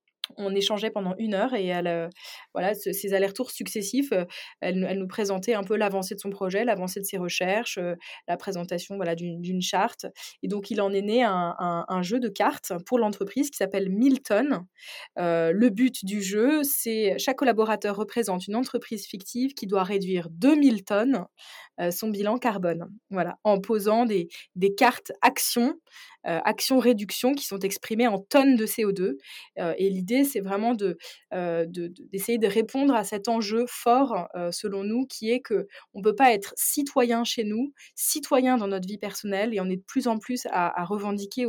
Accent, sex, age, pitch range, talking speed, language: French, female, 20-39, 185-235 Hz, 190 wpm, French